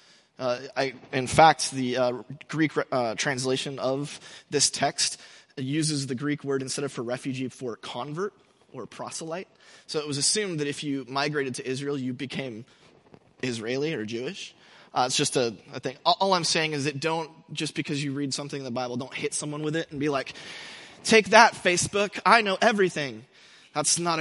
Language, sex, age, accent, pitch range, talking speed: English, male, 20-39, American, 135-185 Hz, 190 wpm